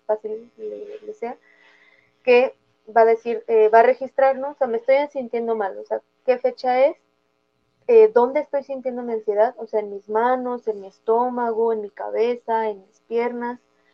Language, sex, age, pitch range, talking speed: Spanish, female, 20-39, 220-255 Hz, 185 wpm